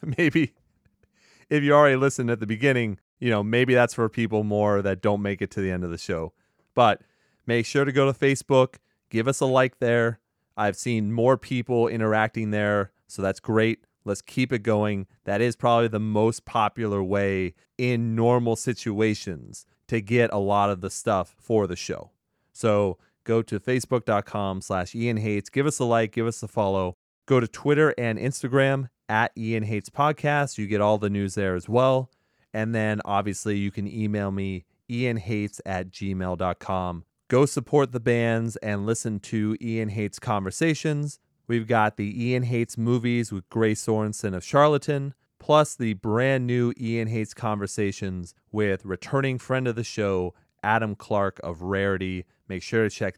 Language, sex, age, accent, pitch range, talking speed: English, male, 30-49, American, 100-125 Hz, 175 wpm